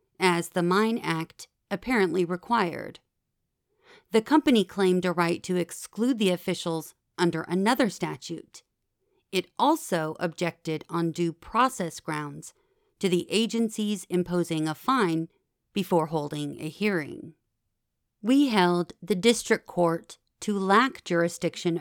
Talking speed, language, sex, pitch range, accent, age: 120 wpm, English, female, 170-215 Hz, American, 40-59